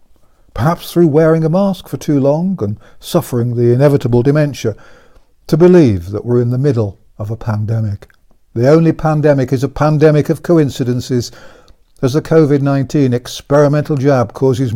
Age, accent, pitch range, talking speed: 60-79, British, 115-150 Hz, 150 wpm